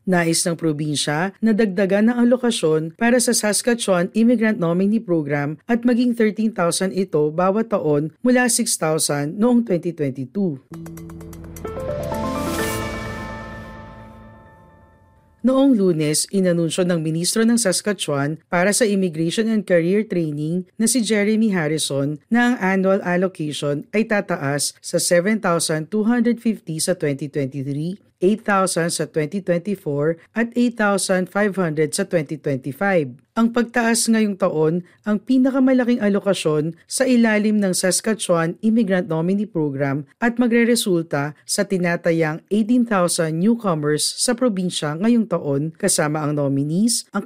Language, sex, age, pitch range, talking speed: Filipino, female, 40-59, 150-215 Hz, 110 wpm